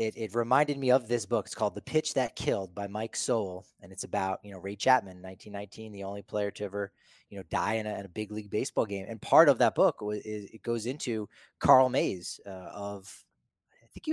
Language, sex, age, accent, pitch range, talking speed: English, male, 20-39, American, 100-125 Hz, 245 wpm